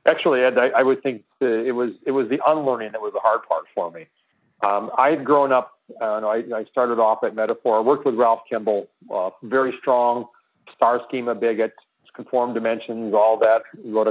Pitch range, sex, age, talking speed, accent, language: 120-150 Hz, male, 40-59, 195 wpm, American, English